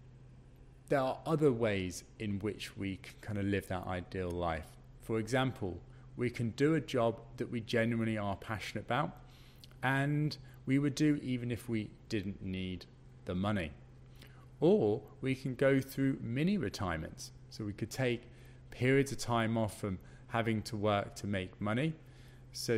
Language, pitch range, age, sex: English, 105-130 Hz, 30-49, male